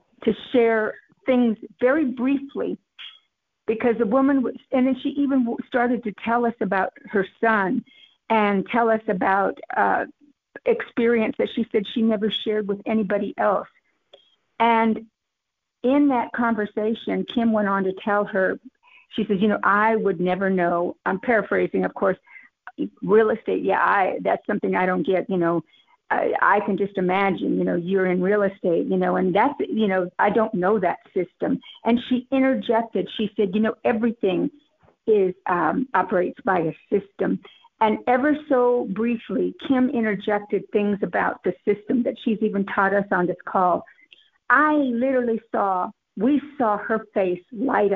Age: 50-69